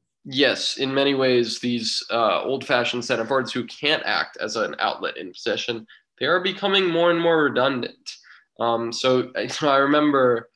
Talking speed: 165 wpm